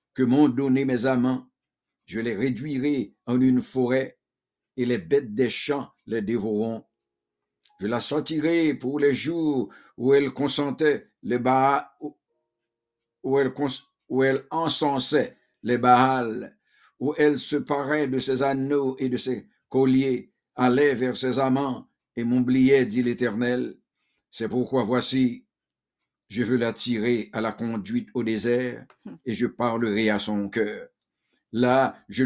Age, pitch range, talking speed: 60-79, 120-135 Hz, 140 wpm